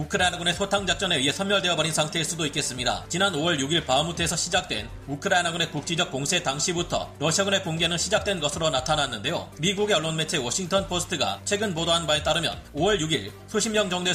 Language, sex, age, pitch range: Korean, male, 30-49, 145-190 Hz